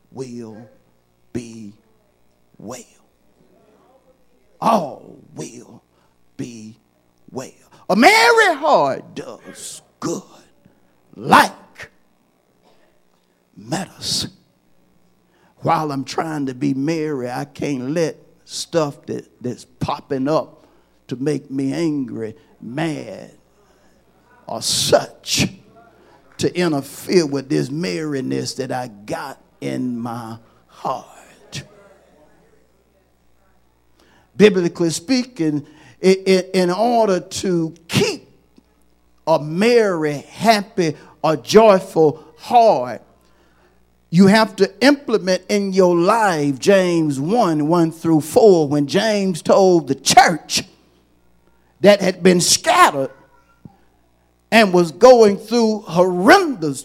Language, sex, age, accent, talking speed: English, male, 50-69, American, 90 wpm